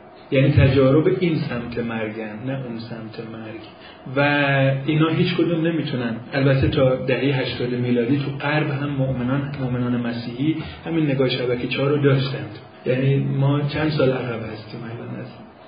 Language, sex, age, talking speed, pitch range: Persian, male, 30-49, 150 wpm, 125-150 Hz